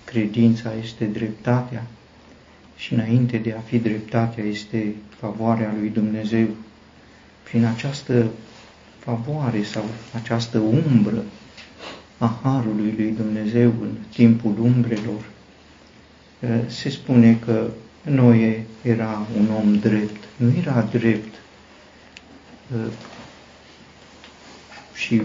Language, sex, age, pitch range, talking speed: Romanian, male, 50-69, 110-120 Hz, 90 wpm